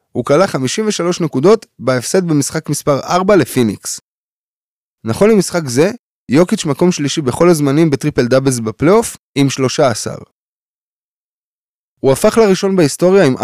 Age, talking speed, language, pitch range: 20-39, 110 wpm, Hebrew, 130-195 Hz